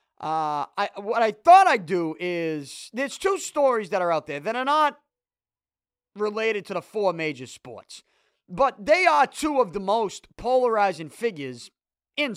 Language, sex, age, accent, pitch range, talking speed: English, male, 30-49, American, 180-255 Hz, 165 wpm